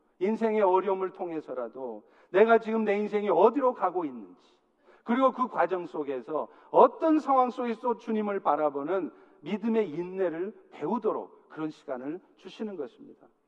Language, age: Korean, 50-69